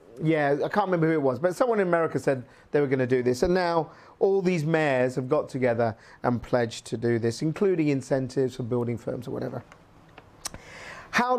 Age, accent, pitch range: 40-59, British, 130-185 Hz